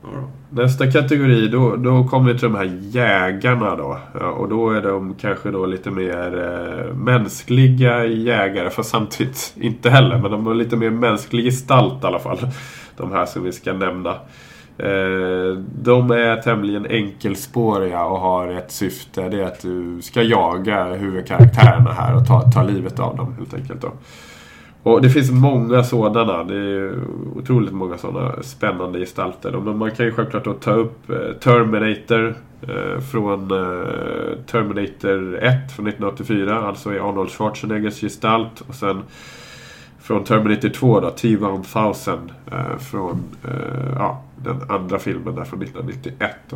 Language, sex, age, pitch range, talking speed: Swedish, male, 20-39, 95-125 Hz, 145 wpm